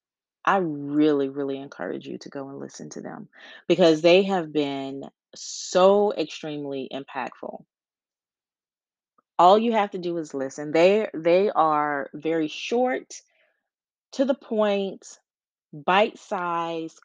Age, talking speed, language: 30-49, 120 wpm, English